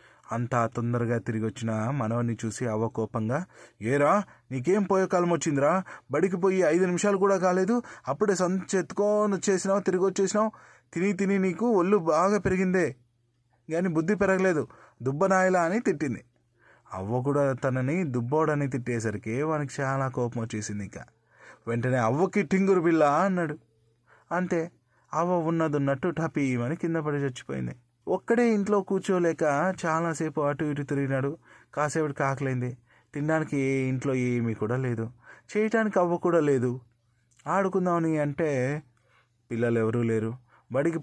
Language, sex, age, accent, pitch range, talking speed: Telugu, male, 30-49, native, 120-175 Hz, 125 wpm